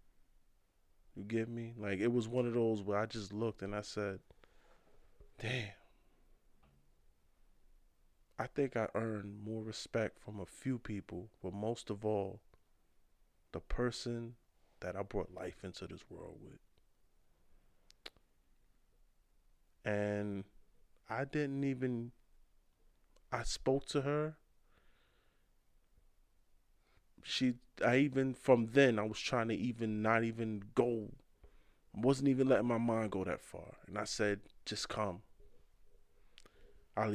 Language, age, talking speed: English, 20-39, 125 wpm